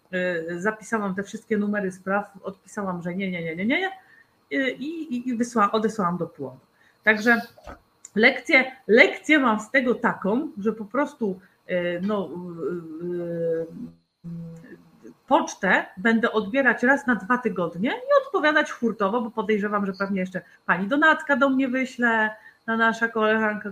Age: 30-49